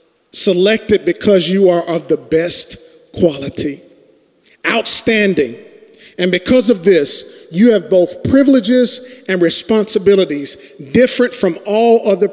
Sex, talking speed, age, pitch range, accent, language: male, 110 wpm, 40-59, 175-240 Hz, American, English